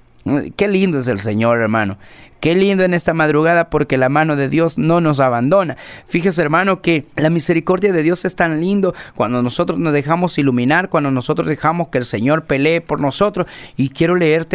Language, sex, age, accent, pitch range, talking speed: Spanish, male, 40-59, Mexican, 125-175 Hz, 190 wpm